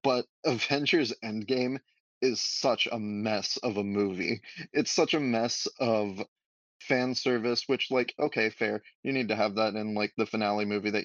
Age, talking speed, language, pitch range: 20-39, 175 wpm, English, 105-125 Hz